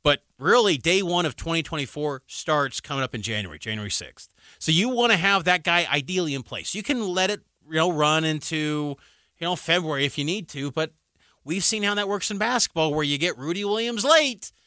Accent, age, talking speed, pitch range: American, 30-49, 215 wpm, 145-200 Hz